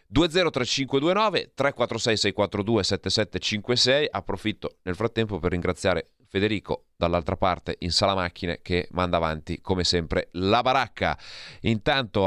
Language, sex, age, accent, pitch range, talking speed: Italian, male, 30-49, native, 85-110 Hz, 110 wpm